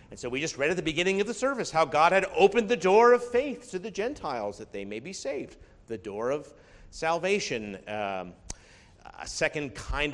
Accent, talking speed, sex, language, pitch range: American, 205 wpm, male, English, 110-150 Hz